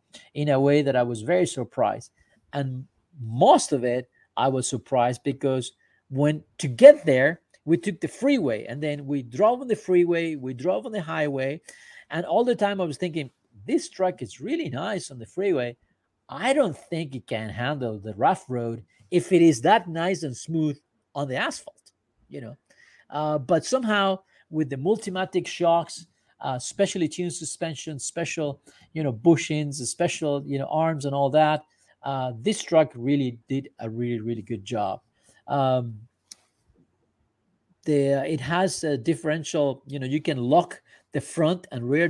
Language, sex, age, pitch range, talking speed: Spanish, male, 50-69, 130-170 Hz, 170 wpm